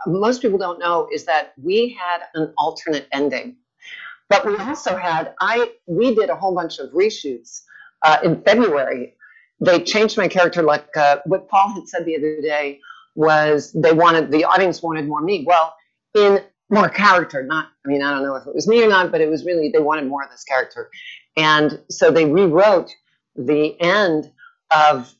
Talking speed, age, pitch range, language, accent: 190 wpm, 50-69, 155-195 Hz, English, American